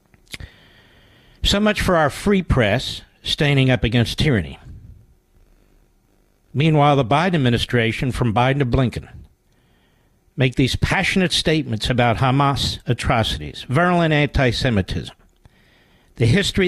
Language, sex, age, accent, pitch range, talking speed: English, male, 60-79, American, 125-185 Hz, 105 wpm